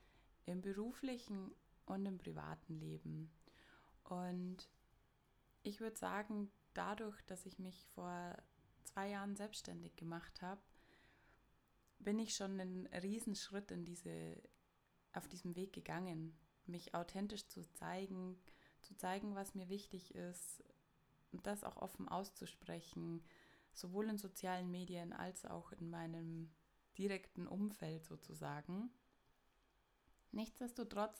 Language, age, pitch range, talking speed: German, 20-39, 180-215 Hz, 110 wpm